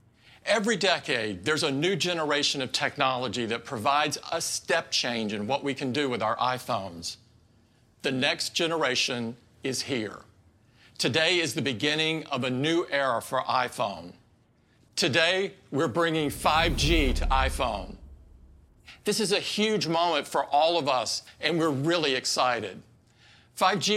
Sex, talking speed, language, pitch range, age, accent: male, 140 wpm, English, 125-170 Hz, 50-69, American